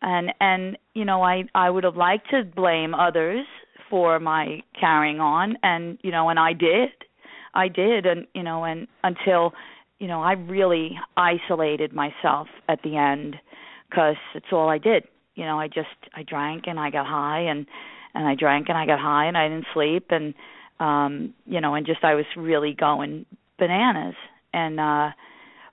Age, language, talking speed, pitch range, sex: 40-59, English, 180 wpm, 160-185 Hz, female